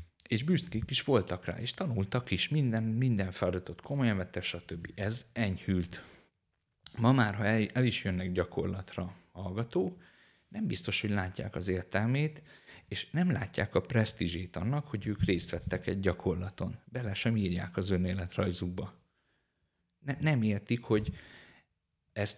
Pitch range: 90-115 Hz